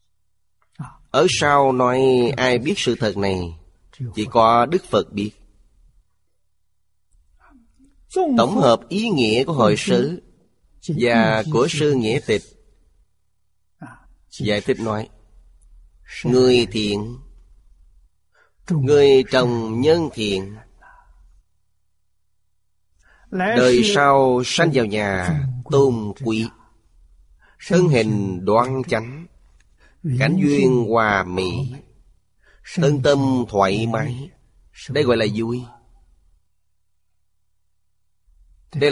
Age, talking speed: 30-49, 90 wpm